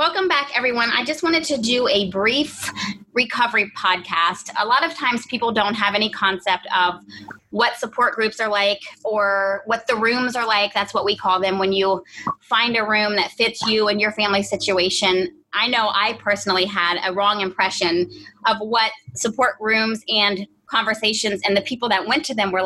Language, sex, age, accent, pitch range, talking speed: English, female, 30-49, American, 195-245 Hz, 190 wpm